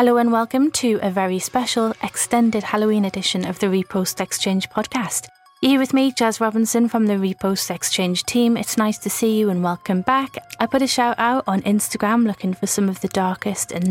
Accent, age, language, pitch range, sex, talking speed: British, 30-49, English, 190-235 Hz, female, 205 wpm